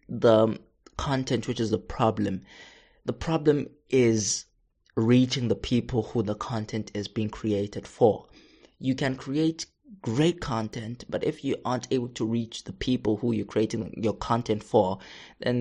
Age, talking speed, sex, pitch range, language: 20-39, 155 wpm, male, 110-130 Hz, English